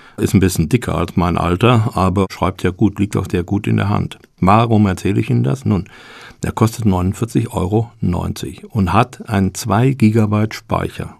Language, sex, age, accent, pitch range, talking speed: German, male, 60-79, German, 90-110 Hz, 180 wpm